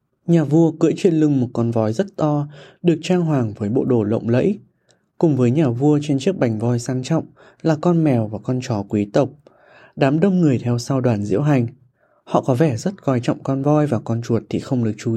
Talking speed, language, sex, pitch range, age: 235 wpm, Vietnamese, male, 120-160 Hz, 20-39